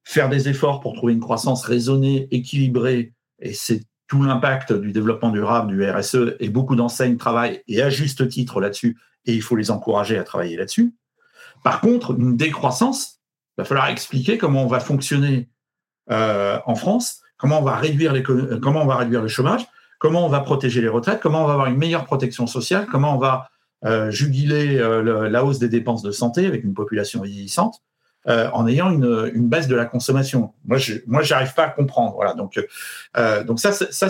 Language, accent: French, French